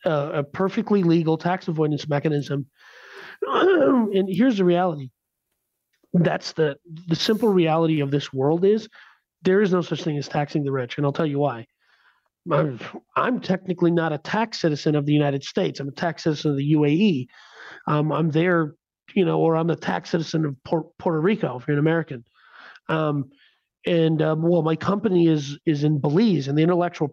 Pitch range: 150-195 Hz